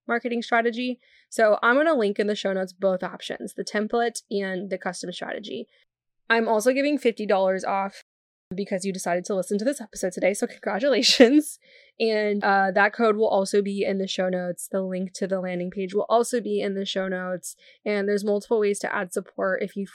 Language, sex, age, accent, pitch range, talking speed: English, female, 10-29, American, 190-225 Hz, 205 wpm